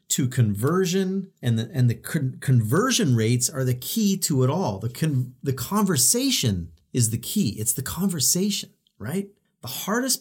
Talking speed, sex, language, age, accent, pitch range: 145 wpm, male, English, 40-59, American, 125-185 Hz